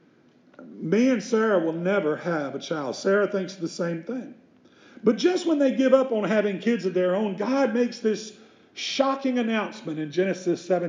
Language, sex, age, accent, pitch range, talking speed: English, male, 50-69, American, 185-255 Hz, 180 wpm